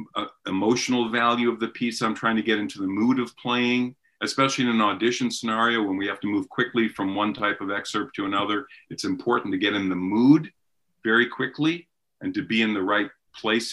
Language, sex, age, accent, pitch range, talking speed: English, male, 50-69, American, 110-135 Hz, 210 wpm